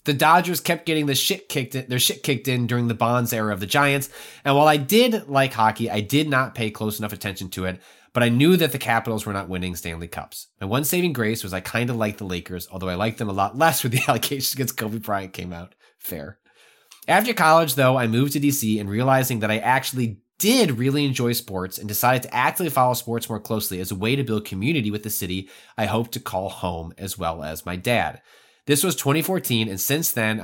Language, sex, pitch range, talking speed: English, male, 105-150 Hz, 240 wpm